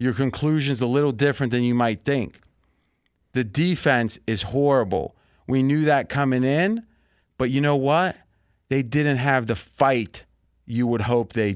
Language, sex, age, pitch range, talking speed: English, male, 30-49, 105-135 Hz, 160 wpm